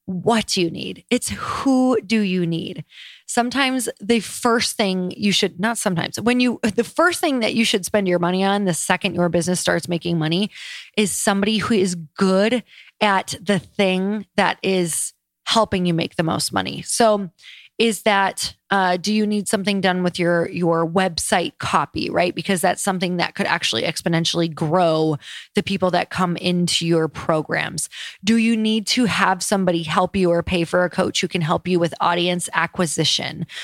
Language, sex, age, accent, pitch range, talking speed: English, female, 20-39, American, 175-230 Hz, 180 wpm